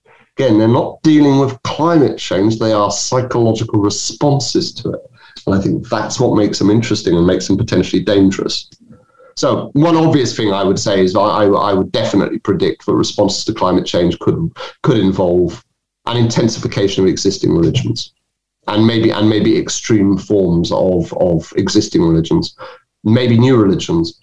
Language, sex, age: English, male, 30-49